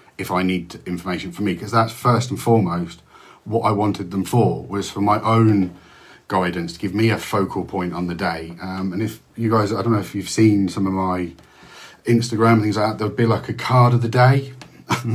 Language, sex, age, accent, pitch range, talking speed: English, male, 40-59, British, 95-120 Hz, 220 wpm